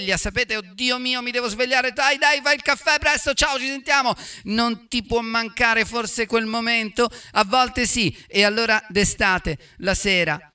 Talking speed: 170 wpm